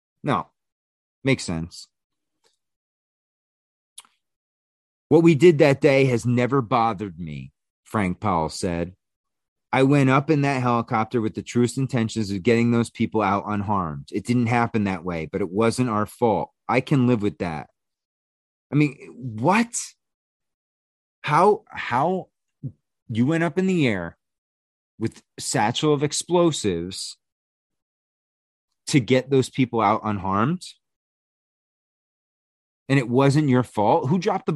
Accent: American